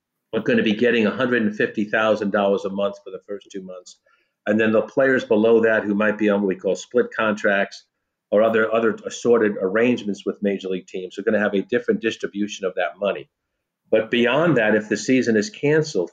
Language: English